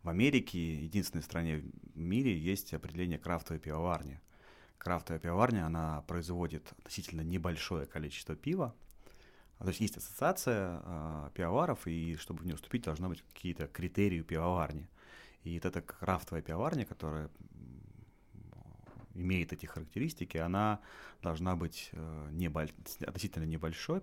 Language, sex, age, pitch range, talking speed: Russian, male, 30-49, 80-95 Hz, 125 wpm